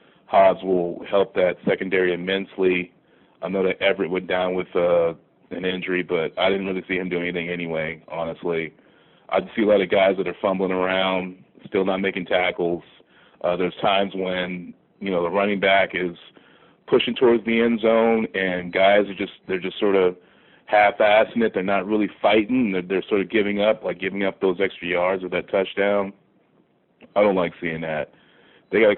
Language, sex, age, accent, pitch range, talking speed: English, male, 30-49, American, 90-100 Hz, 190 wpm